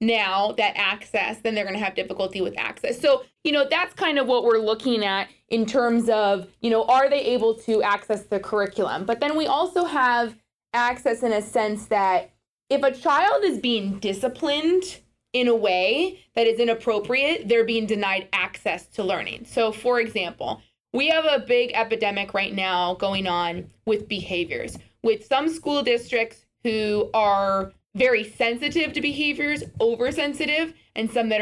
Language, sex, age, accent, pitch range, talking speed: English, female, 20-39, American, 210-255 Hz, 170 wpm